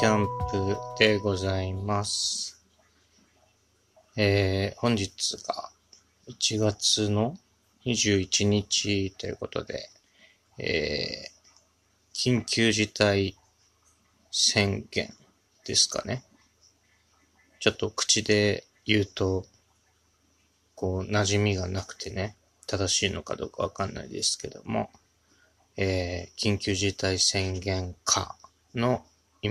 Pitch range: 95-105 Hz